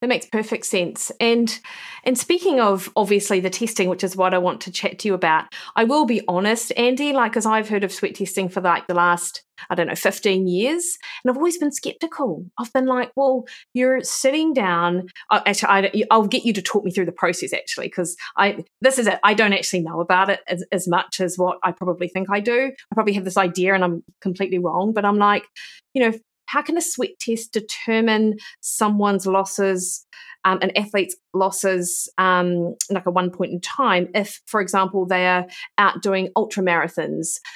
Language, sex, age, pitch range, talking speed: English, female, 30-49, 180-225 Hz, 210 wpm